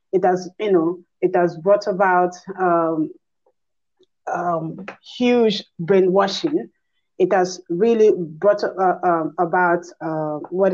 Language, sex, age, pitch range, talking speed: English, female, 30-49, 180-235 Hz, 115 wpm